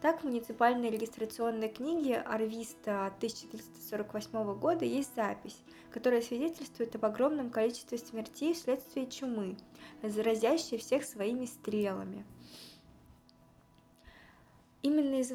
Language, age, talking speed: Russian, 20-39, 95 wpm